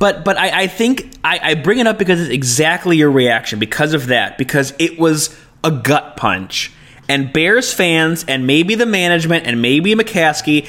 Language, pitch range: English, 140-195 Hz